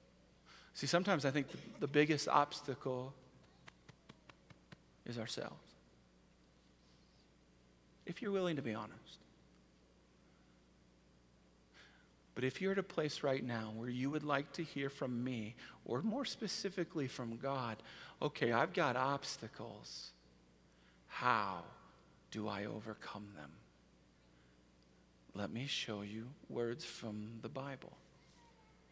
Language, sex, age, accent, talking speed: English, male, 40-59, American, 110 wpm